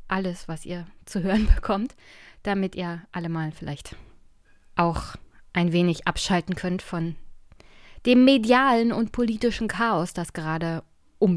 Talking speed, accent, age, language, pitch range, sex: 130 wpm, German, 20-39, German, 180-230 Hz, female